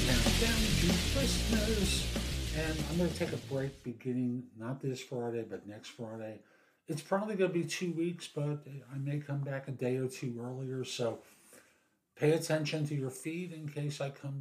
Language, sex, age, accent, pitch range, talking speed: English, male, 50-69, American, 120-150 Hz, 180 wpm